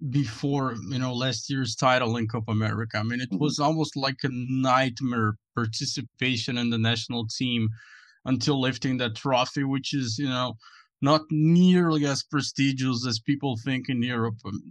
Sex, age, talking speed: male, 20-39, 160 wpm